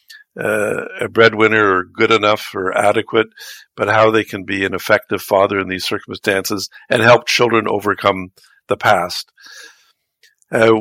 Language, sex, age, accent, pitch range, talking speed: English, male, 50-69, American, 100-115 Hz, 145 wpm